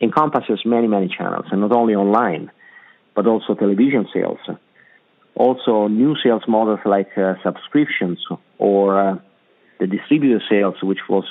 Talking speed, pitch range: 140 wpm, 95-115 Hz